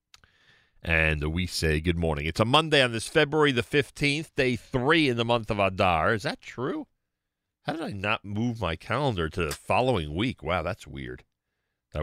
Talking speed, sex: 190 wpm, male